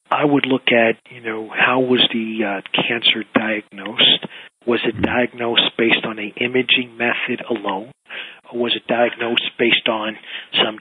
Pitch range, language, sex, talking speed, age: 115-130 Hz, English, male, 155 wpm, 40-59